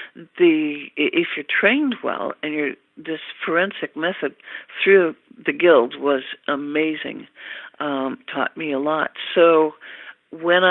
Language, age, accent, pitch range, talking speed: English, 60-79, American, 145-195 Hz, 125 wpm